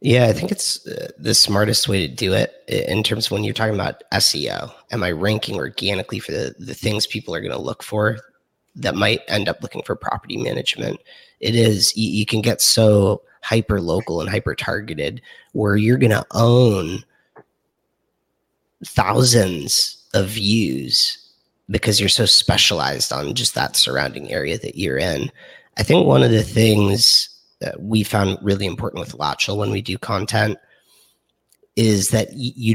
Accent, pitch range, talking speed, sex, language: American, 100-115 Hz, 165 wpm, male, English